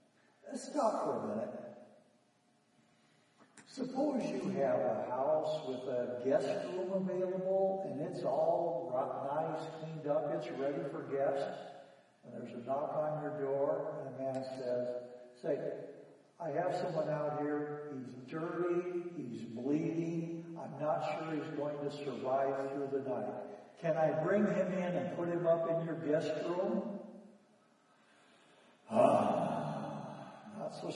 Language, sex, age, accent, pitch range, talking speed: English, male, 60-79, American, 135-190 Hz, 135 wpm